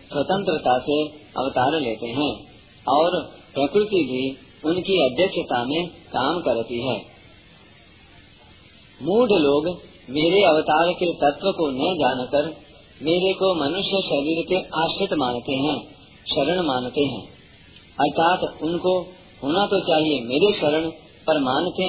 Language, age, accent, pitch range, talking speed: Hindi, 40-59, native, 140-180 Hz, 120 wpm